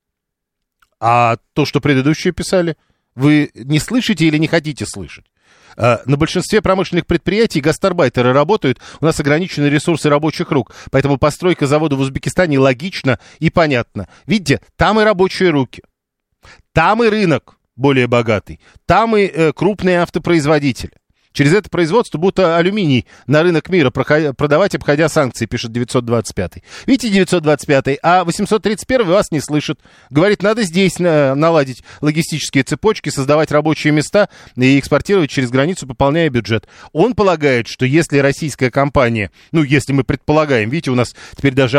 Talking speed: 140 wpm